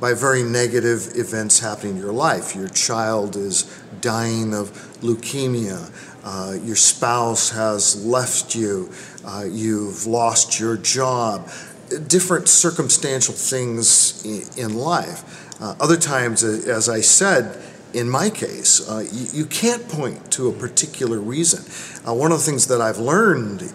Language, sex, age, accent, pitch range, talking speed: English, male, 50-69, American, 115-140 Hz, 150 wpm